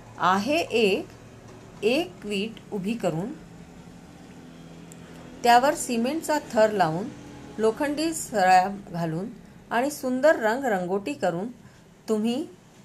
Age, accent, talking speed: 40-59, native, 65 wpm